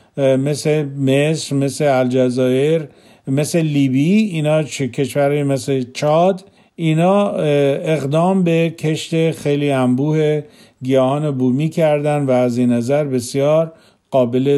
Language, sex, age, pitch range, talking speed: Persian, male, 50-69, 135-180 Hz, 105 wpm